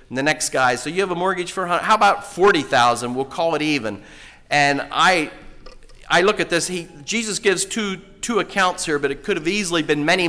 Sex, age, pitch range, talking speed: male, 40-59, 135-180 Hz, 215 wpm